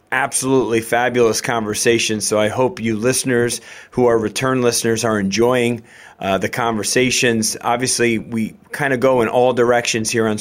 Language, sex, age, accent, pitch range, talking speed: English, male, 30-49, American, 110-130 Hz, 155 wpm